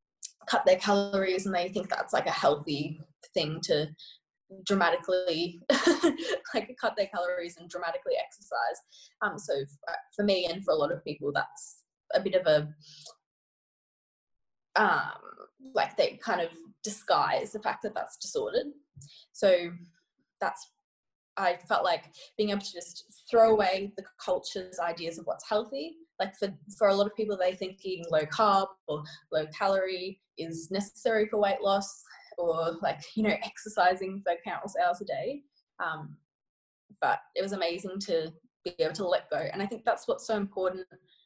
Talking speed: 160 wpm